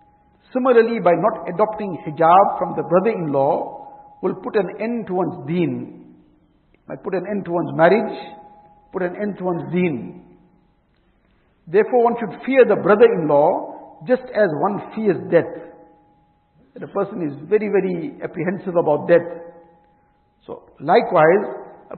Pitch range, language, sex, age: 165-205 Hz, English, male, 60-79